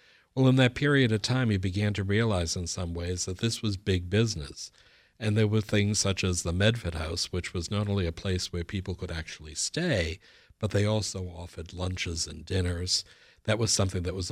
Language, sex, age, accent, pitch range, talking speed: English, male, 60-79, American, 90-115 Hz, 210 wpm